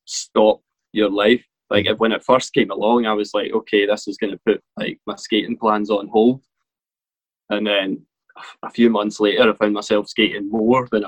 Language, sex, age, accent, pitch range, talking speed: English, male, 20-39, British, 105-120 Hz, 195 wpm